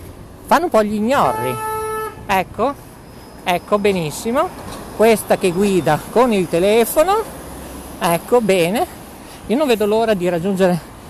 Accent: Italian